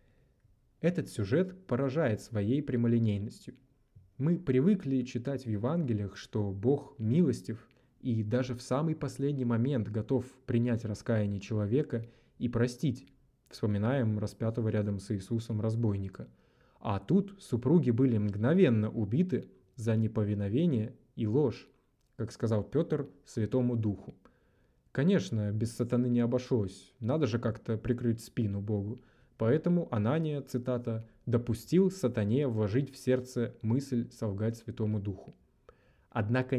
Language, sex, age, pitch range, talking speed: Russian, male, 20-39, 110-130 Hz, 115 wpm